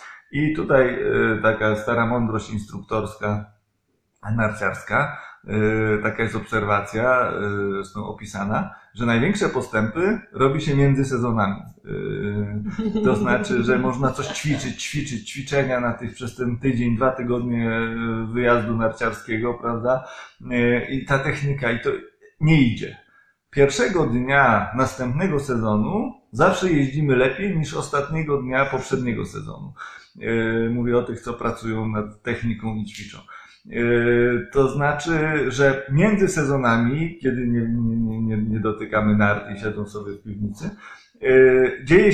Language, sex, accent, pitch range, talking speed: Polish, male, native, 110-140 Hz, 115 wpm